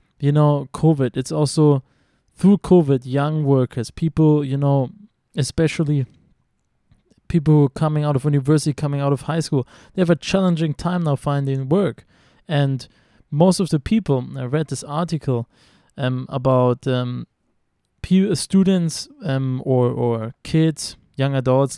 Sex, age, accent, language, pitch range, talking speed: male, 20-39, German, Hebrew, 130-160 Hz, 140 wpm